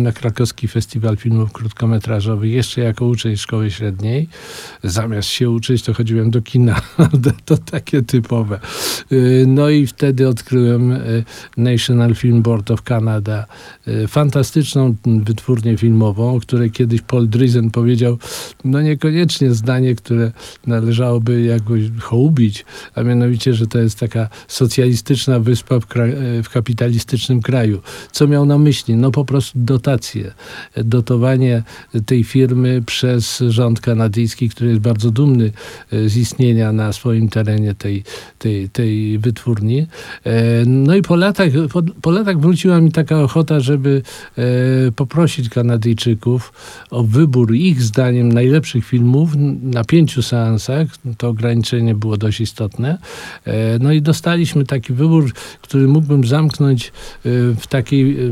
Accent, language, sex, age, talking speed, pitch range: native, Polish, male, 50-69, 120 wpm, 115-135 Hz